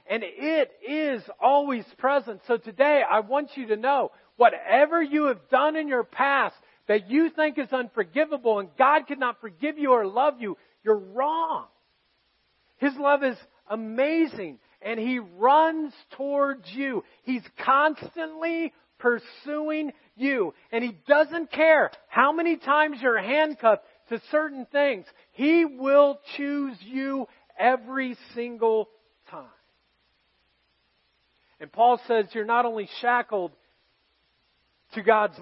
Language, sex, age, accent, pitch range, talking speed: English, male, 40-59, American, 195-280 Hz, 130 wpm